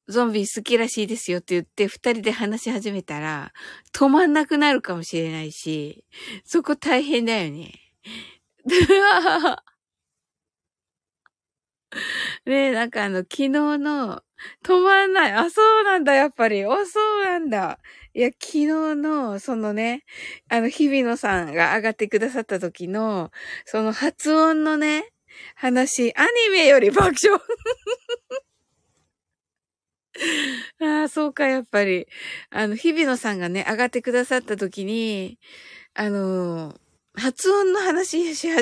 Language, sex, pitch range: Japanese, female, 210-310 Hz